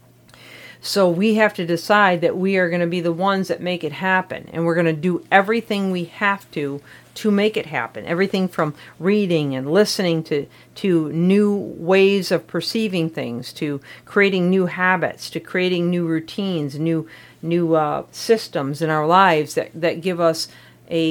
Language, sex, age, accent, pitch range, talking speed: English, female, 50-69, American, 155-195 Hz, 175 wpm